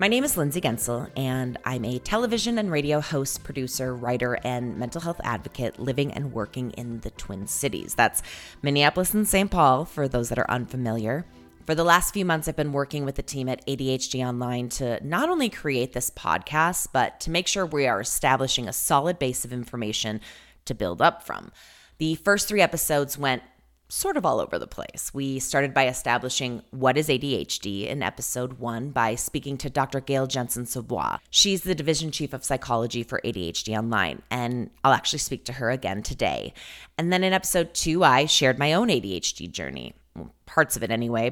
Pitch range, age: 120-150 Hz, 20-39